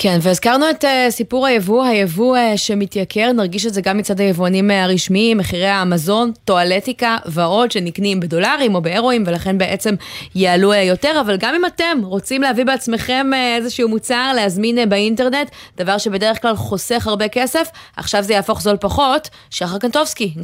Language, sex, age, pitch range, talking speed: Hebrew, female, 20-39, 180-240 Hz, 150 wpm